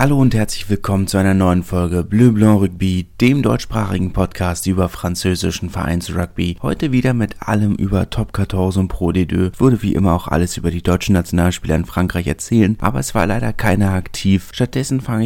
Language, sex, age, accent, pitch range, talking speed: German, male, 30-49, German, 90-100 Hz, 195 wpm